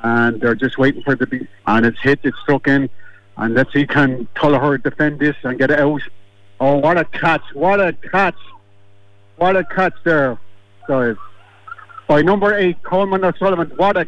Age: 60-79